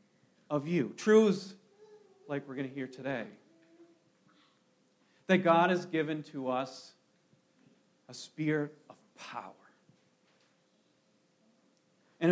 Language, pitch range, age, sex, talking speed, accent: English, 150-200 Hz, 40-59, male, 95 wpm, American